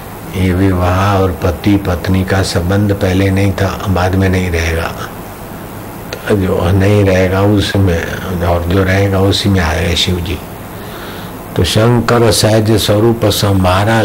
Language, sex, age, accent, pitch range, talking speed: Hindi, male, 60-79, native, 90-105 Hz, 130 wpm